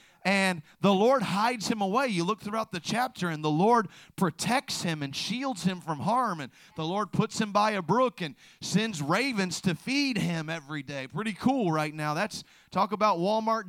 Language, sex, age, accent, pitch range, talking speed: English, male, 40-59, American, 180-240 Hz, 195 wpm